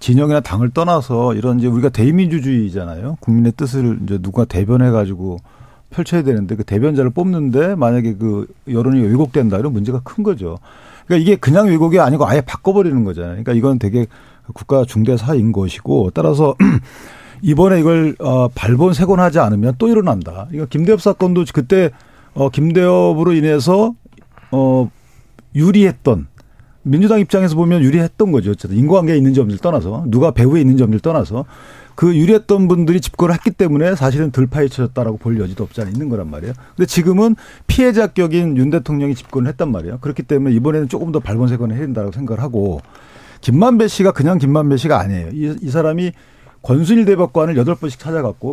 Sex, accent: male, native